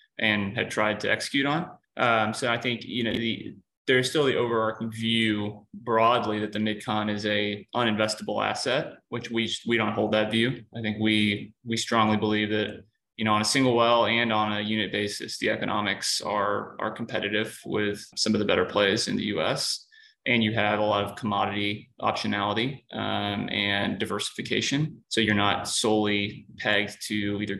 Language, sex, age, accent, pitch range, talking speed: English, male, 20-39, American, 105-115 Hz, 180 wpm